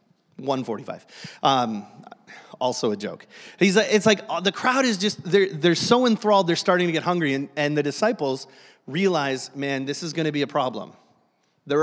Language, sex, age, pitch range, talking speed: English, male, 30-49, 145-185 Hz, 180 wpm